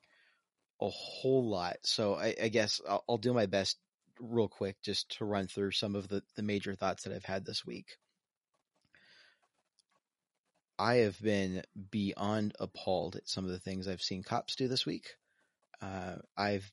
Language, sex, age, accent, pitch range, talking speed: English, male, 30-49, American, 100-120 Hz, 170 wpm